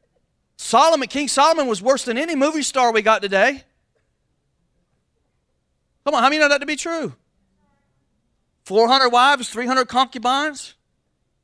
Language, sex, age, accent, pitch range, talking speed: English, male, 40-59, American, 205-255 Hz, 135 wpm